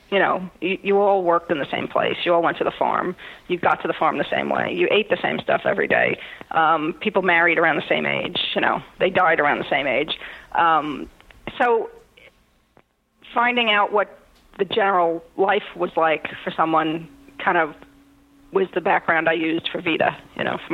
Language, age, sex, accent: English, 40-59, female, American